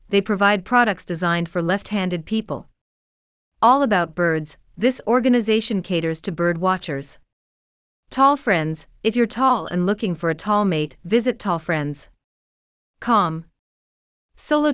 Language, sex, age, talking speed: English, female, 40-59, 125 wpm